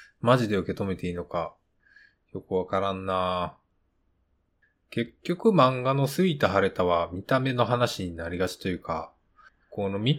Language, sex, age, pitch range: Japanese, male, 20-39, 90-130 Hz